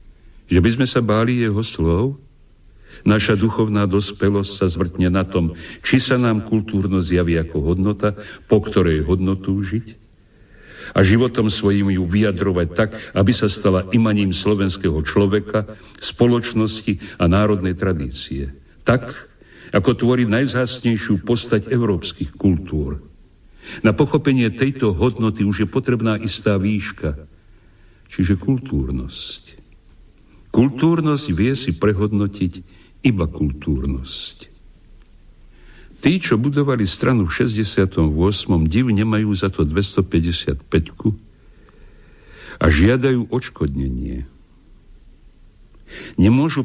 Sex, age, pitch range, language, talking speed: male, 60-79, 90-115 Hz, Slovak, 105 wpm